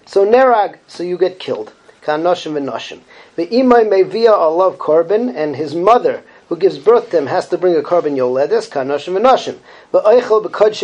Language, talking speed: English, 195 wpm